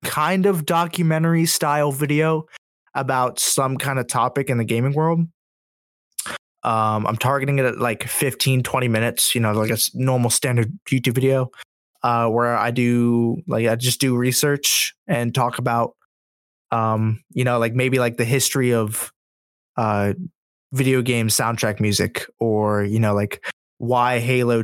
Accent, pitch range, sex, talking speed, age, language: American, 115-135 Hz, male, 155 wpm, 20-39, English